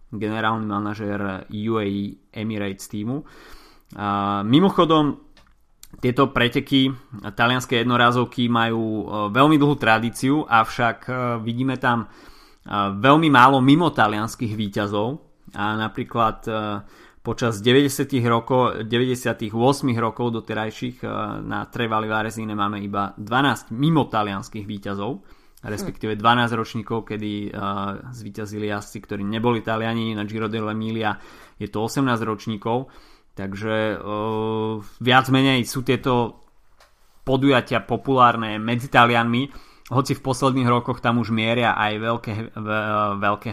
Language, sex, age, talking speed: Slovak, male, 20-39, 100 wpm